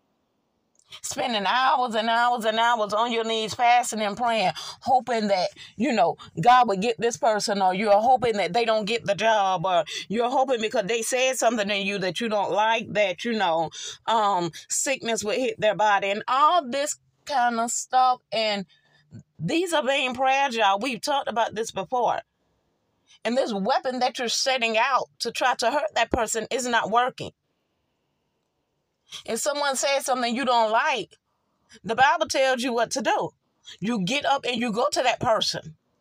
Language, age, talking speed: English, 30-49, 180 wpm